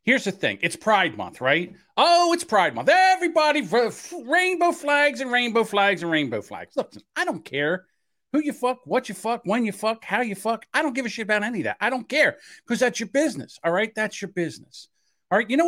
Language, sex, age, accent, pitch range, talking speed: English, male, 50-69, American, 225-320 Hz, 235 wpm